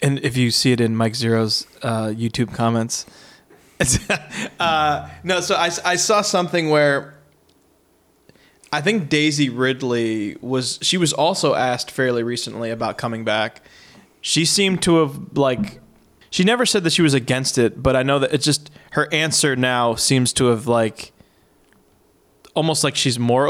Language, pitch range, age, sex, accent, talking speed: English, 120-145 Hz, 20-39, male, American, 160 wpm